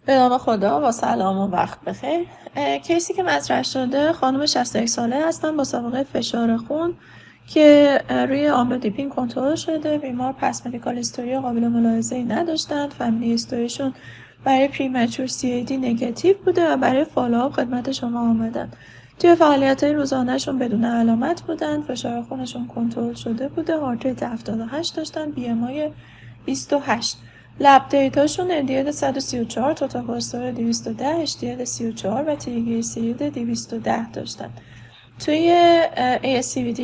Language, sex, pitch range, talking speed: Persian, female, 235-290 Hz, 130 wpm